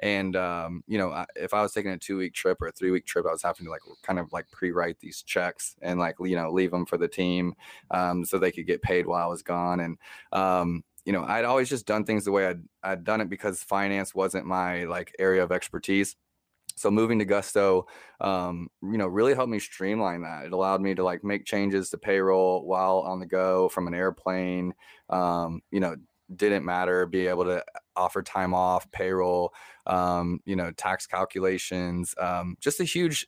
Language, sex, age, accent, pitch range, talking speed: English, male, 20-39, American, 90-105 Hz, 210 wpm